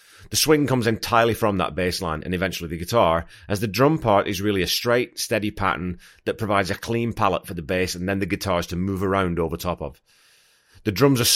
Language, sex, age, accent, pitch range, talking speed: English, male, 30-49, British, 85-115 Hz, 225 wpm